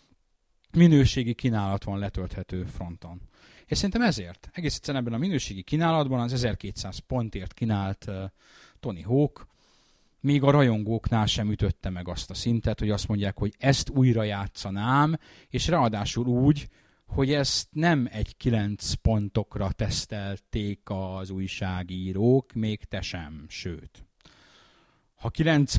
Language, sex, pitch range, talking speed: Hungarian, male, 95-125 Hz, 125 wpm